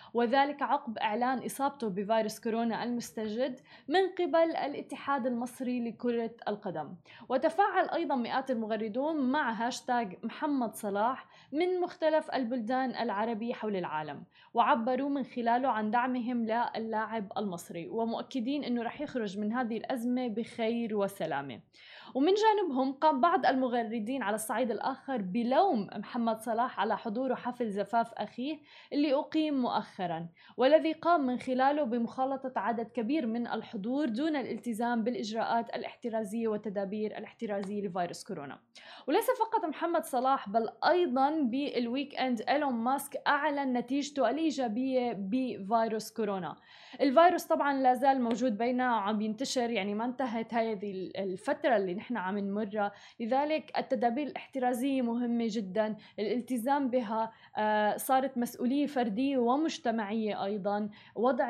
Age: 20-39